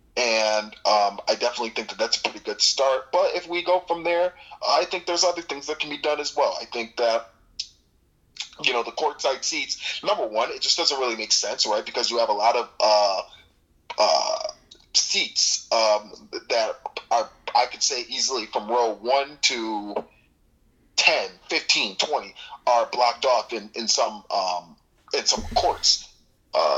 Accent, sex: American, male